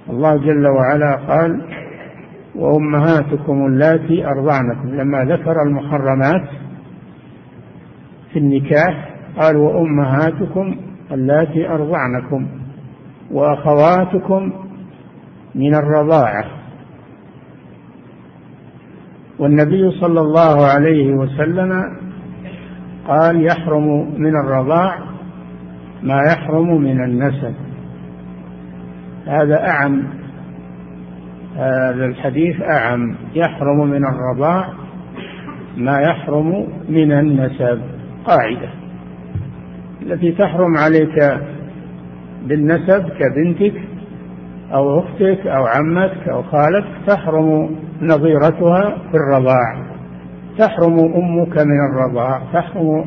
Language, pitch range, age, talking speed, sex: Arabic, 130-165 Hz, 60-79, 70 wpm, male